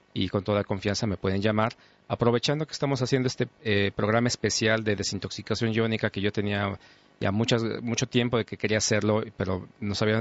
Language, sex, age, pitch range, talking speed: English, male, 40-59, 100-120 Hz, 190 wpm